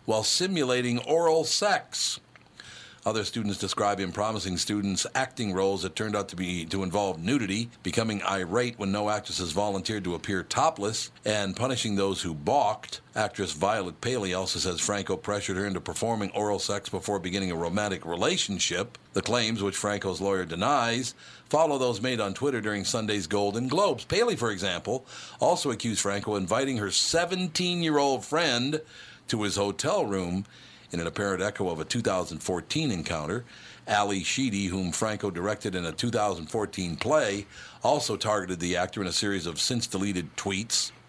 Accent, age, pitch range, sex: American, 60-79, 95-115 Hz, male